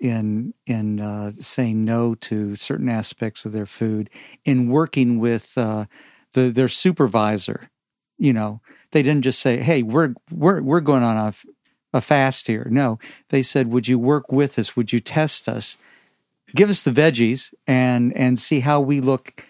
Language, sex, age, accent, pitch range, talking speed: English, male, 50-69, American, 115-140 Hz, 170 wpm